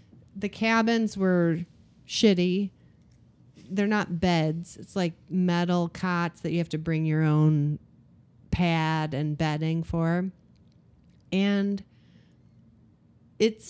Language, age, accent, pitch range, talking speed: English, 30-49, American, 160-195 Hz, 105 wpm